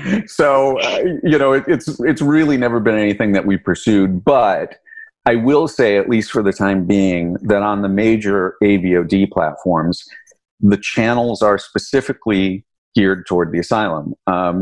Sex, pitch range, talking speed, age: male, 95-120 Hz, 160 wpm, 40-59